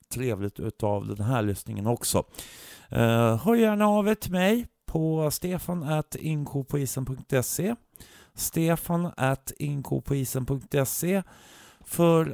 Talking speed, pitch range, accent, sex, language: 85 wpm, 115-160 Hz, native, male, Swedish